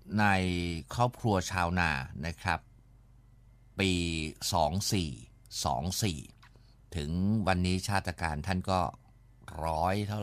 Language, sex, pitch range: Thai, male, 90-115 Hz